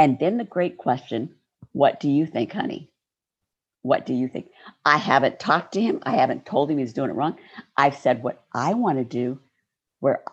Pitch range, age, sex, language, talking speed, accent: 135-215 Hz, 50-69, female, English, 205 wpm, American